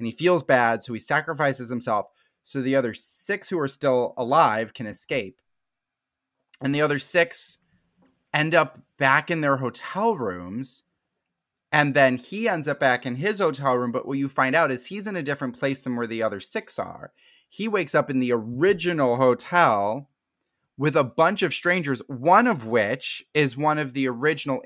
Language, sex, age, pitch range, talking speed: English, male, 30-49, 125-155 Hz, 185 wpm